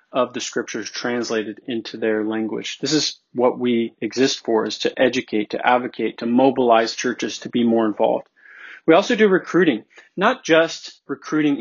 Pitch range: 120-145 Hz